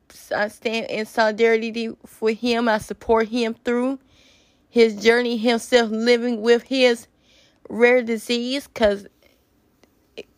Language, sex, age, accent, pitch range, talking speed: English, female, 20-39, American, 215-240 Hz, 115 wpm